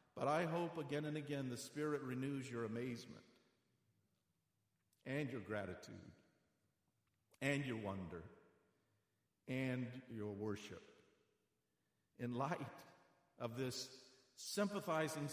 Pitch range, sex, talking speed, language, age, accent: 105-150 Hz, male, 100 wpm, English, 50-69, American